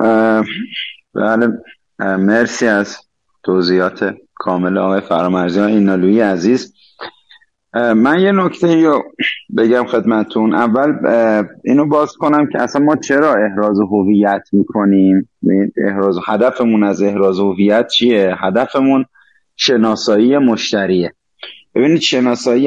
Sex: male